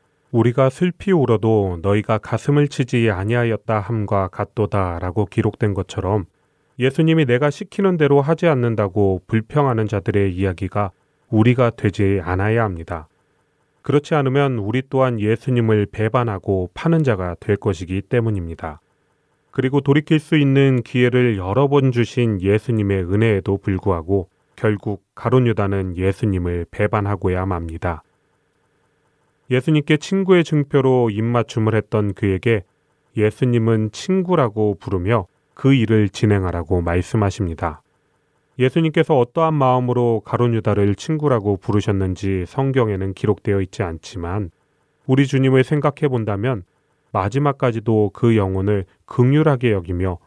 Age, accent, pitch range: 30-49, native, 100-145 Hz